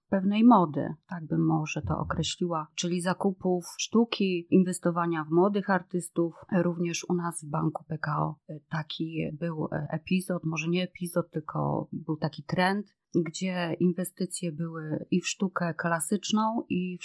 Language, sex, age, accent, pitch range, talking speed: Polish, female, 30-49, native, 160-180 Hz, 135 wpm